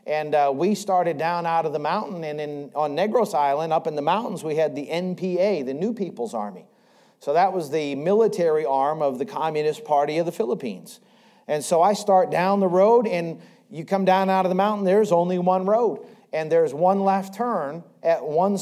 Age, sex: 40-59, male